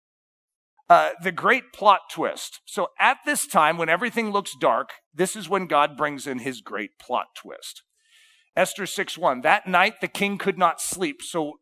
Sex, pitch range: male, 170-245 Hz